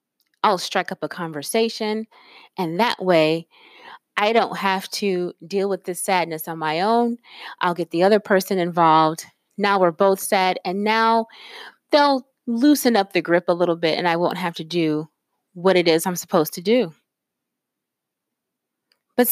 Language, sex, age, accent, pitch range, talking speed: English, female, 20-39, American, 175-230 Hz, 165 wpm